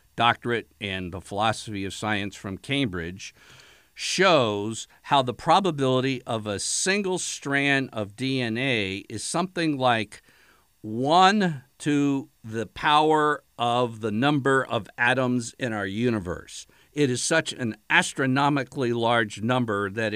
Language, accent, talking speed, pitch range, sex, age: English, American, 120 wpm, 110-150 Hz, male, 50-69